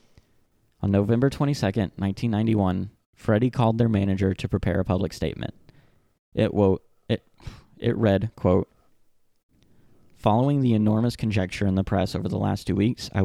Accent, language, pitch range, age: American, English, 95-115 Hz, 20-39